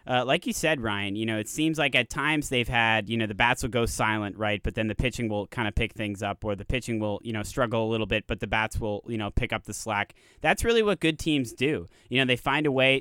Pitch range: 110-135 Hz